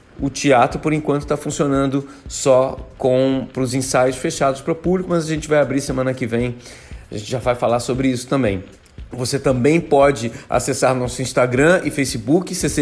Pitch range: 125-155 Hz